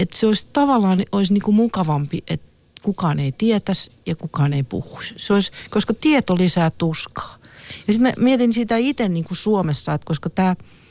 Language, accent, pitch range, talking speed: Finnish, native, 165-230 Hz, 170 wpm